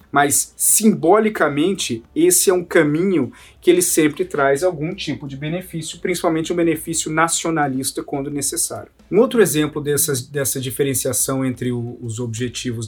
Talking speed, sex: 130 wpm, male